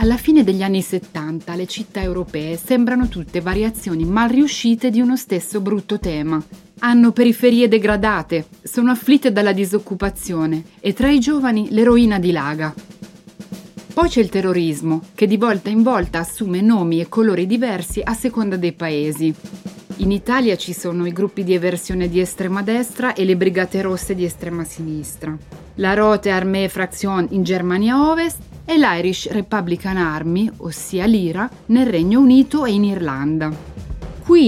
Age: 30-49